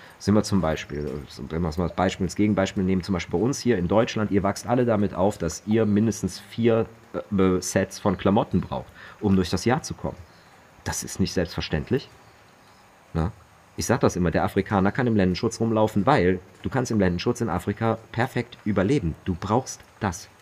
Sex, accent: male, German